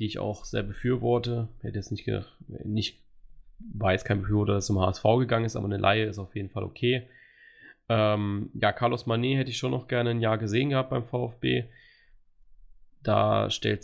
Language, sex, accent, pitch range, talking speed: German, male, German, 105-120 Hz, 180 wpm